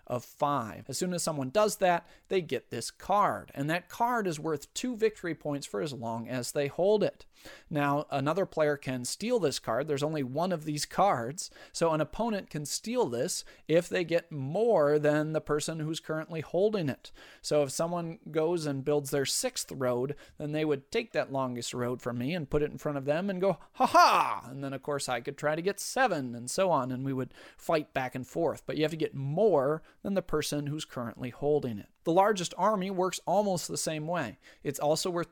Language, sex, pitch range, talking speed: English, male, 140-180 Hz, 220 wpm